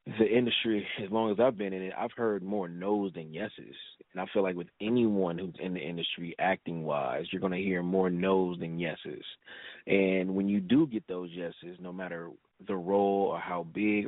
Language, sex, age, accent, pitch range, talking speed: English, male, 30-49, American, 90-100 Hz, 205 wpm